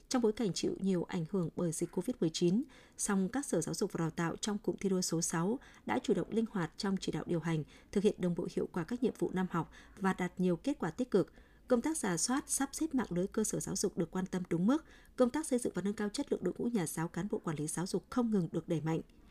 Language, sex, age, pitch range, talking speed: Vietnamese, female, 20-39, 175-220 Hz, 290 wpm